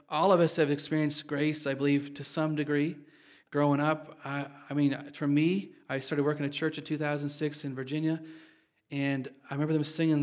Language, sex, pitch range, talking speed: English, male, 140-160 Hz, 190 wpm